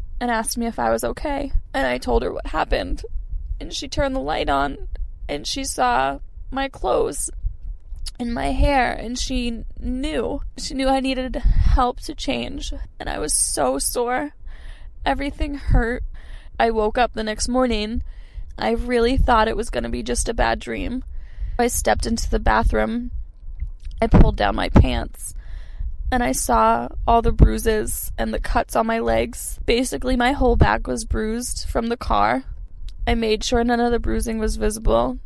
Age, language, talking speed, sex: 10-29, English, 170 wpm, female